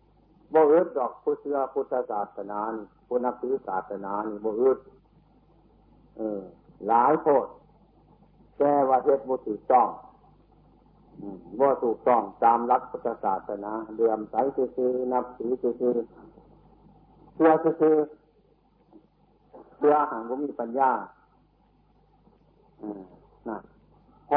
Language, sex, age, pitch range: Thai, male, 60-79, 115-145 Hz